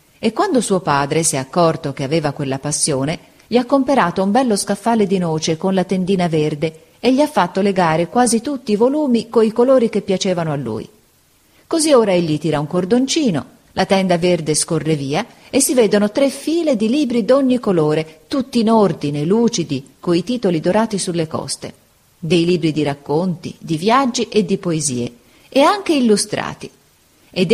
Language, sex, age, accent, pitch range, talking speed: Italian, female, 40-59, native, 160-235 Hz, 175 wpm